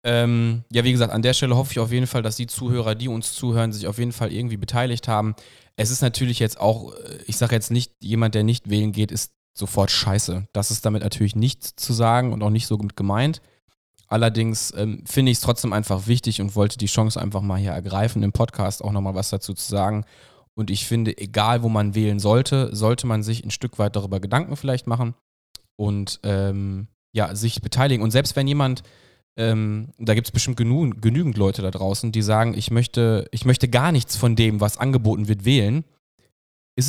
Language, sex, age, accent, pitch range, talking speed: German, male, 20-39, German, 105-125 Hz, 210 wpm